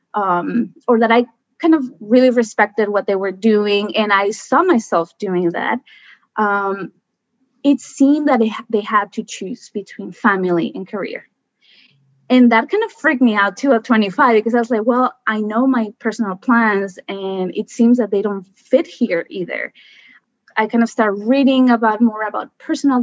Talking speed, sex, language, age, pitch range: 180 wpm, female, English, 20-39, 200-250 Hz